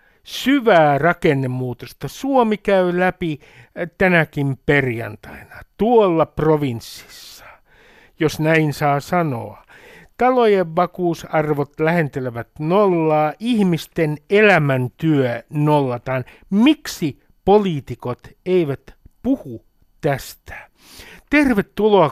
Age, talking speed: 60-79, 70 wpm